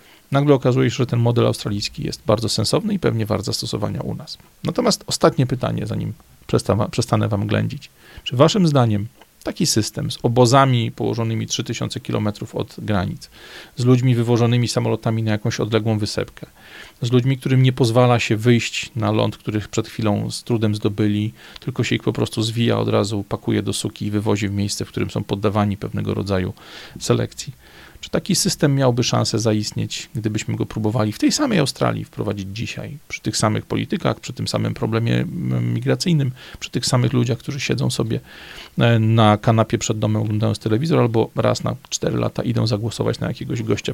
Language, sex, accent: Polish, male, native